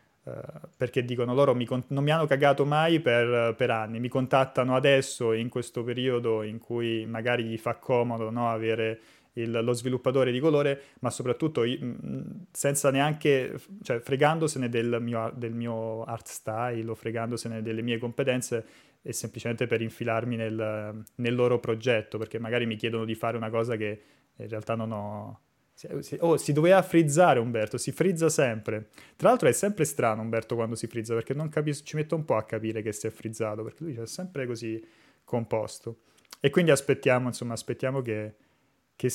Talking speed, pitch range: 170 wpm, 115-135 Hz